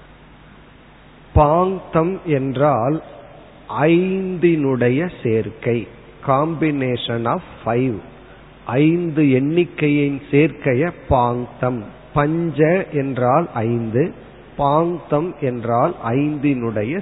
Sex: male